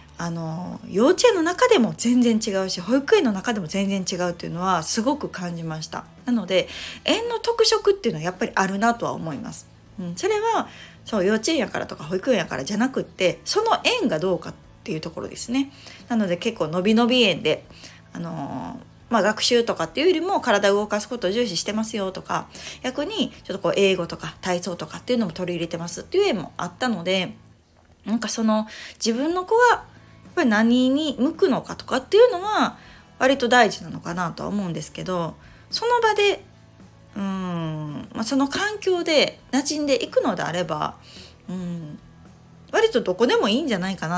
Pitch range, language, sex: 180-260 Hz, Japanese, female